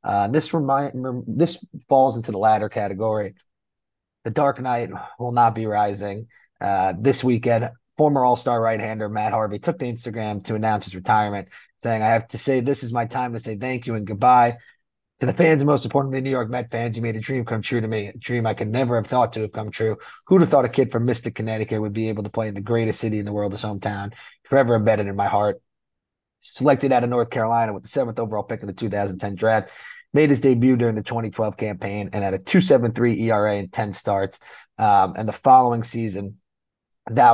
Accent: American